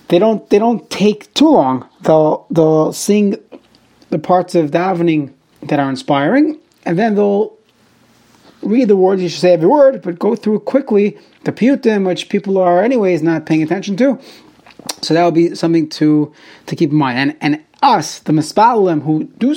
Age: 30-49